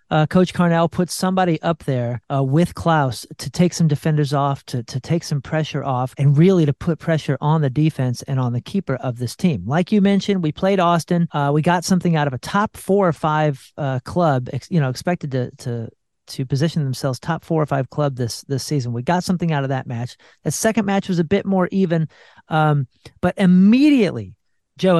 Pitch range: 140-180 Hz